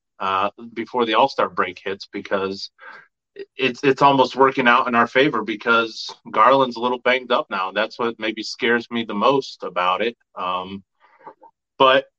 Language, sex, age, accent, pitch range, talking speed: English, male, 30-49, American, 105-130 Hz, 160 wpm